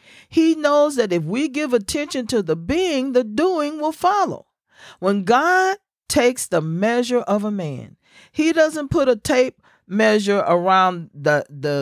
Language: English